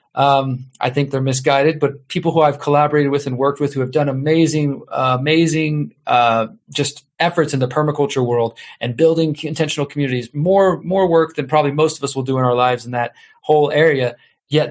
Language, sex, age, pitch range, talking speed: English, male, 30-49, 135-155 Hz, 195 wpm